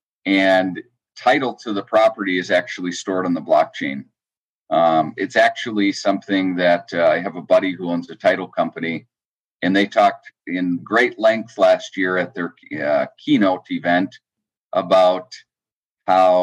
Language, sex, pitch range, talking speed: English, male, 90-135 Hz, 150 wpm